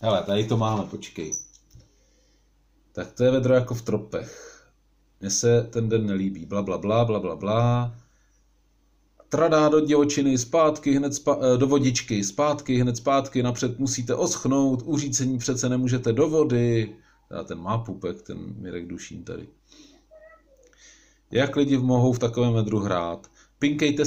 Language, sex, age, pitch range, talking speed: Czech, male, 40-59, 115-155 Hz, 140 wpm